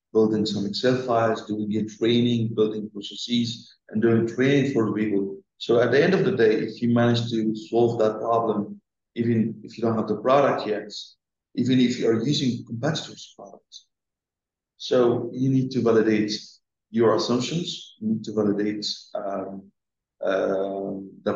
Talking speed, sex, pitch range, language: 165 wpm, male, 100-115 Hz, English